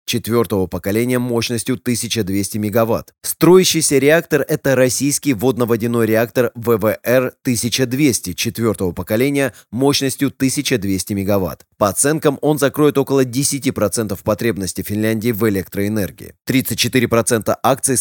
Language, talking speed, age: Russian, 100 wpm, 20-39